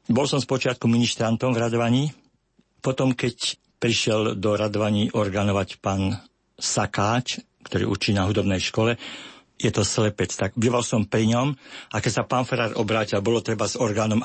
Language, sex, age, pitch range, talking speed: Slovak, male, 50-69, 105-125 Hz, 150 wpm